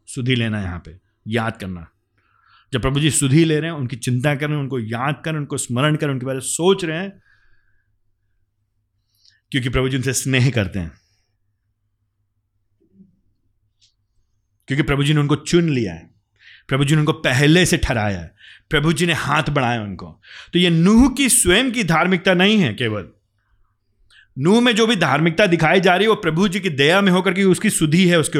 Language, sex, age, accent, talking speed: Hindi, male, 30-49, native, 185 wpm